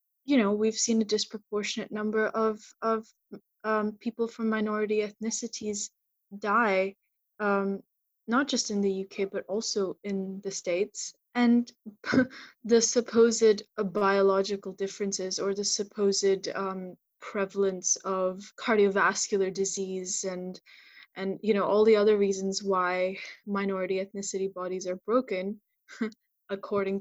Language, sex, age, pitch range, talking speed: English, female, 20-39, 195-220 Hz, 120 wpm